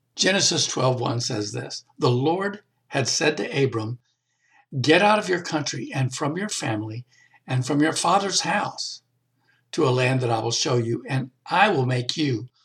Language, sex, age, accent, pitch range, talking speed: English, male, 60-79, American, 120-145 Hz, 175 wpm